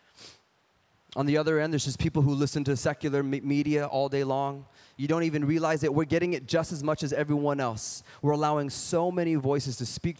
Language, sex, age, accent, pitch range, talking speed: English, male, 20-39, American, 130-155 Hz, 210 wpm